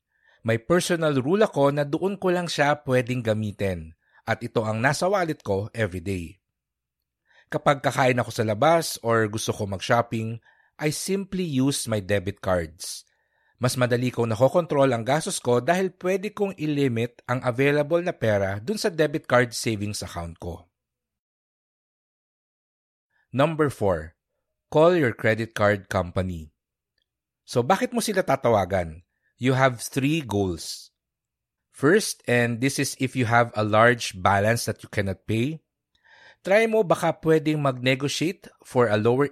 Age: 50-69